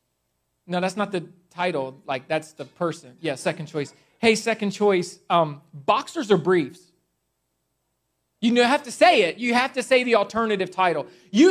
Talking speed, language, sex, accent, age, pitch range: 165 wpm, English, male, American, 30-49, 145-190 Hz